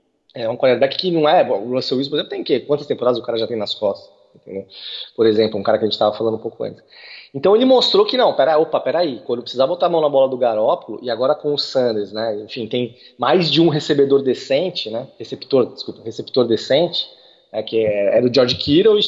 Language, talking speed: Portuguese, 250 wpm